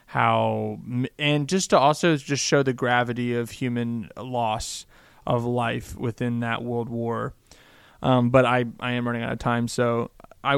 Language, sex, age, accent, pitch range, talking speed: English, male, 20-39, American, 115-135 Hz, 165 wpm